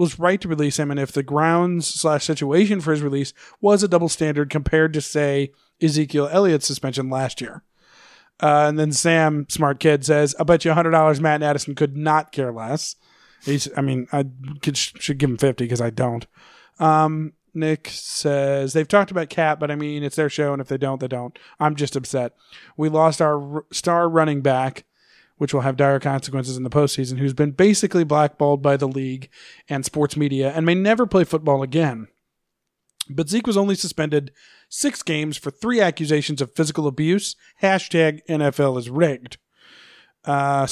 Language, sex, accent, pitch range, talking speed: English, male, American, 140-165 Hz, 190 wpm